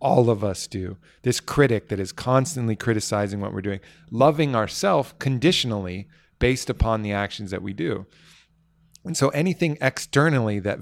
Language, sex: English, male